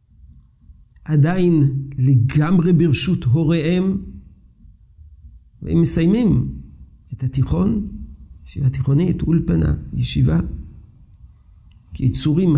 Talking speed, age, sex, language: 60 wpm, 50-69, male, Hebrew